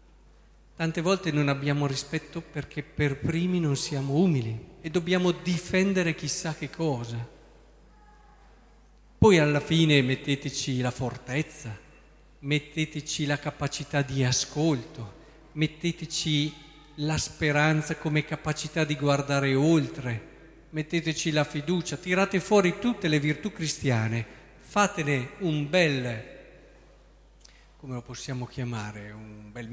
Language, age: Italian, 40-59